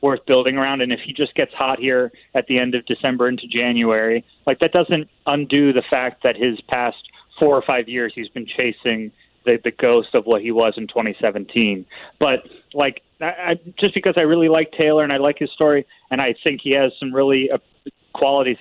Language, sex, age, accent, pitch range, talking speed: English, male, 30-49, American, 130-155 Hz, 205 wpm